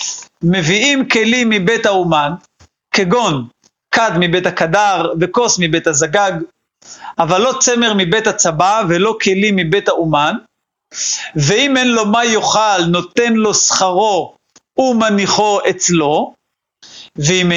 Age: 50-69